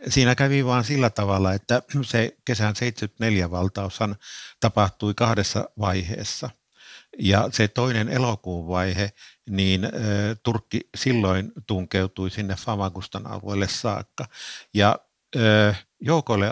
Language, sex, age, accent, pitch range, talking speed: Finnish, male, 50-69, native, 100-120 Hz, 105 wpm